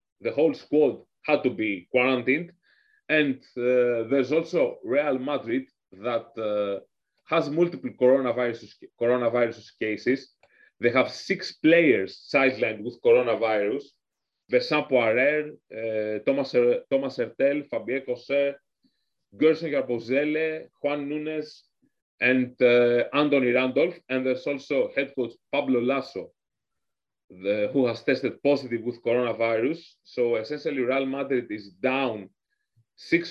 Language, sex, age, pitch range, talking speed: English, male, 30-49, 120-155 Hz, 110 wpm